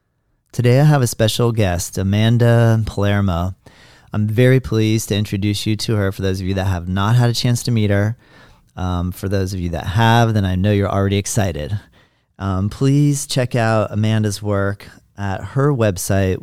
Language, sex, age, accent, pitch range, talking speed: English, male, 40-59, American, 100-120 Hz, 185 wpm